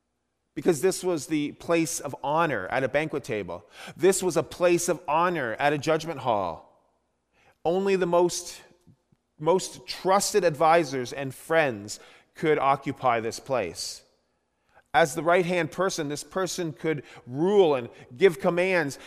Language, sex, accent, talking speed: English, male, American, 140 wpm